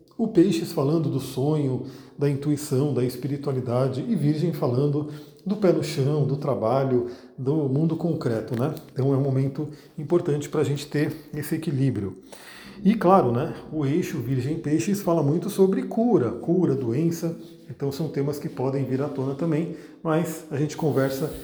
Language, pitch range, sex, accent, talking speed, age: Portuguese, 135-165 Hz, male, Brazilian, 160 wpm, 40-59